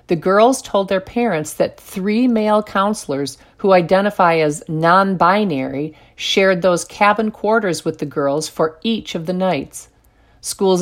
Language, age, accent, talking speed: English, 50-69, American, 145 wpm